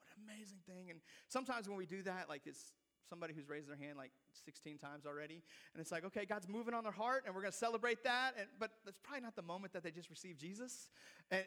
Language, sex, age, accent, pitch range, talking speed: English, male, 30-49, American, 195-290 Hz, 245 wpm